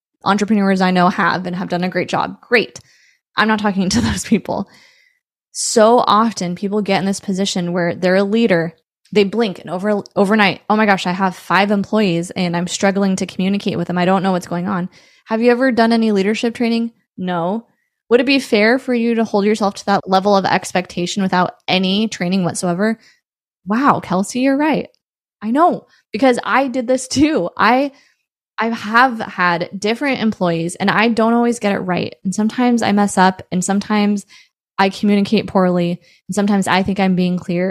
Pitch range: 185-220 Hz